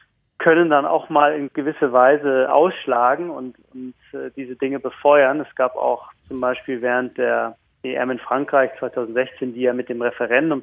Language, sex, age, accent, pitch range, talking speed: German, male, 30-49, German, 125-150 Hz, 170 wpm